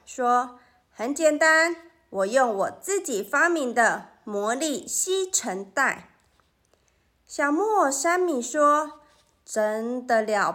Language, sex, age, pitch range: Chinese, female, 30-49, 225-320 Hz